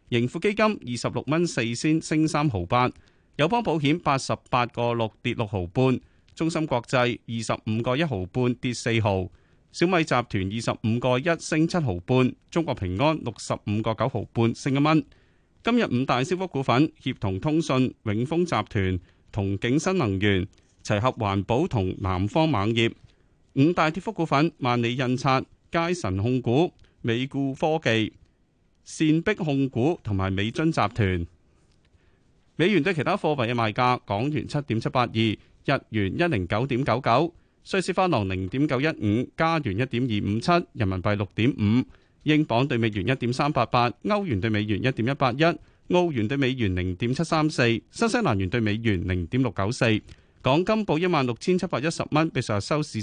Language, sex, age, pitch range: Chinese, male, 30-49, 105-155 Hz